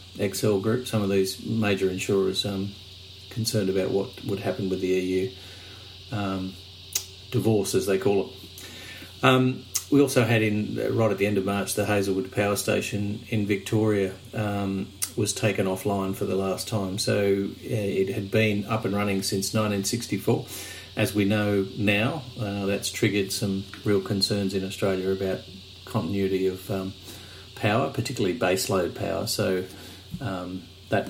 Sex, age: male, 40-59